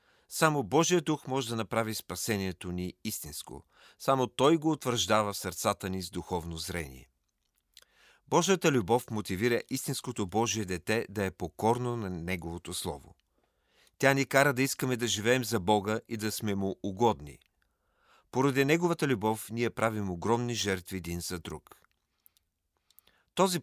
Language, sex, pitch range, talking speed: Bulgarian, male, 95-130 Hz, 140 wpm